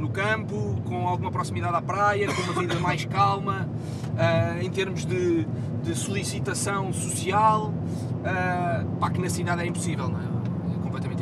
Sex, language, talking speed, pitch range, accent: male, Portuguese, 160 wpm, 120-140 Hz, Portuguese